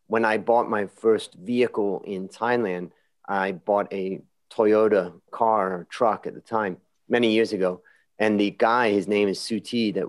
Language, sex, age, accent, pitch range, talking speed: English, male, 30-49, American, 100-120 Hz, 170 wpm